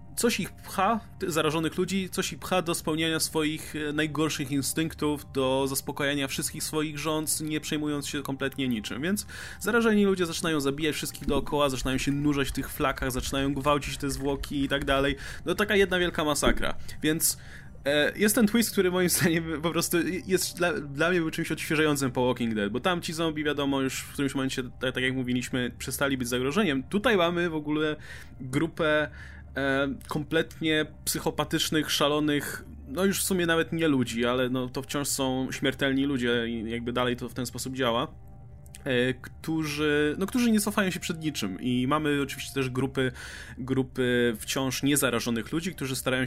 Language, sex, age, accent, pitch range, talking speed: Polish, male, 20-39, native, 130-165 Hz, 170 wpm